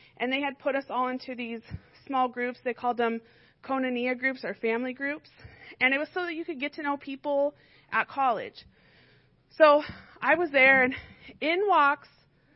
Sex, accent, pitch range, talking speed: female, American, 230-300 Hz, 180 wpm